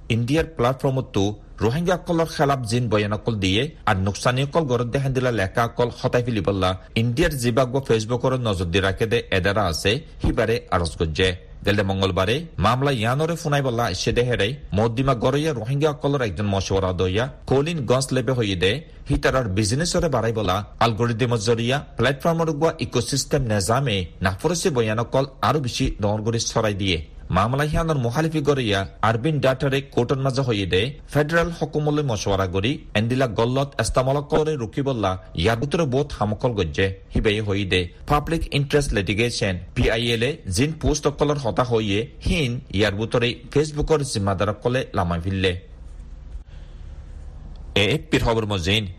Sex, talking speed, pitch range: male, 70 wpm, 100-140 Hz